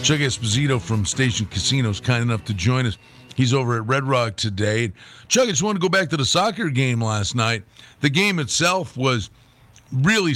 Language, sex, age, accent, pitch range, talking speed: English, male, 50-69, American, 125-165 Hz, 205 wpm